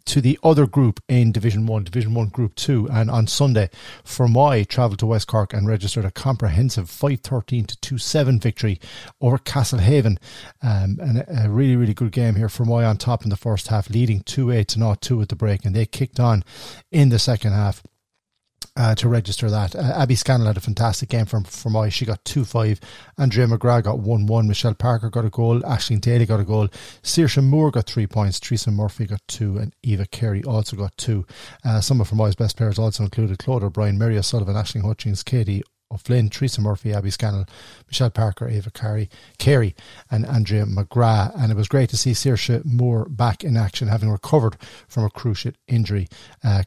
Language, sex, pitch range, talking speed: English, male, 105-125 Hz, 200 wpm